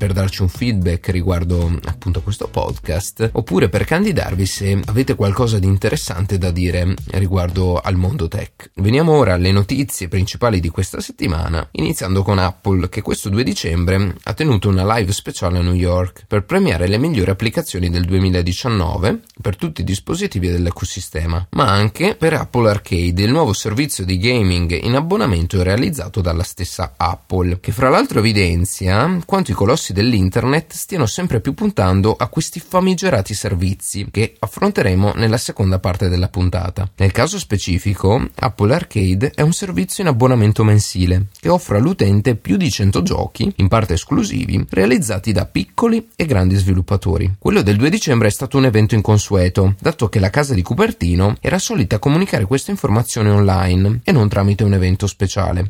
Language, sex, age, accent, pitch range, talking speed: Italian, male, 30-49, native, 95-125 Hz, 165 wpm